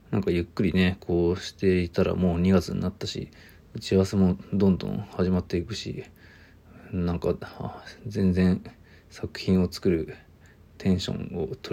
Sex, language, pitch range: male, Japanese, 90-110 Hz